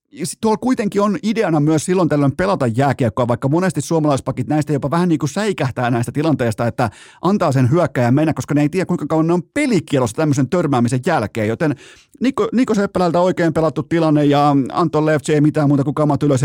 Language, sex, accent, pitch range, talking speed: Finnish, male, native, 125-170 Hz, 195 wpm